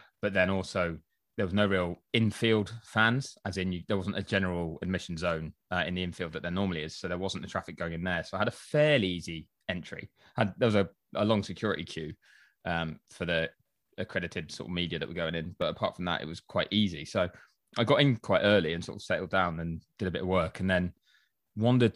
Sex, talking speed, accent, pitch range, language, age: male, 240 wpm, British, 85-105 Hz, English, 20-39